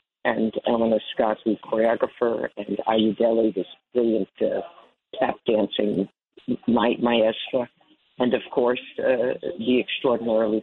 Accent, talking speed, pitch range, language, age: American, 100 wpm, 115-145 Hz, English, 50-69